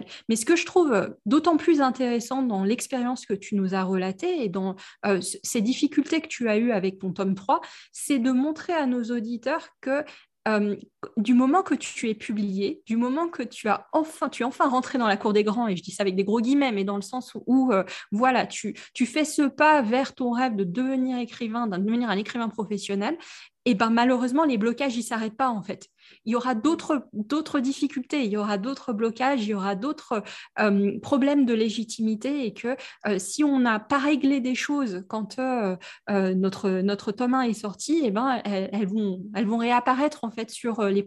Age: 20-39